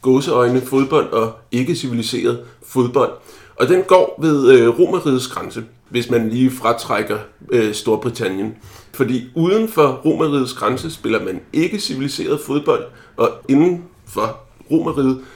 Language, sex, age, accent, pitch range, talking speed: Danish, male, 30-49, native, 120-150 Hz, 120 wpm